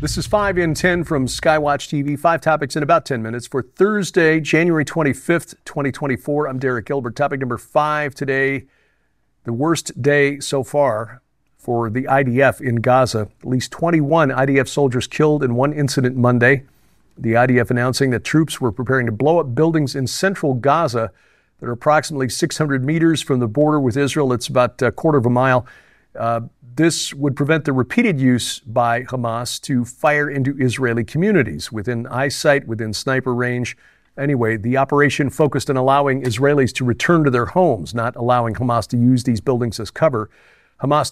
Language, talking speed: English, 170 wpm